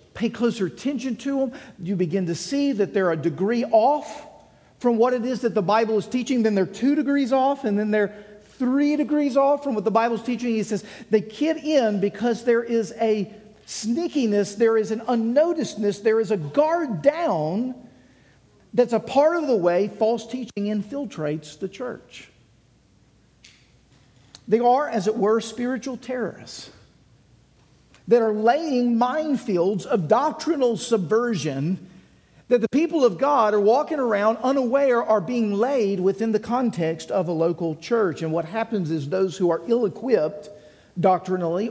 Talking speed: 160 wpm